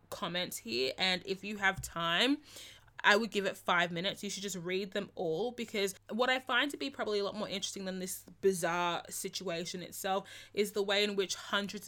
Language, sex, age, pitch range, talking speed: English, female, 20-39, 175-215 Hz, 205 wpm